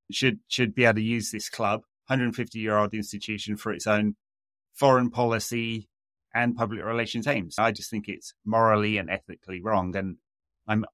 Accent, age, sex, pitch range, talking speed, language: British, 30-49, male, 100-120 Hz, 170 wpm, English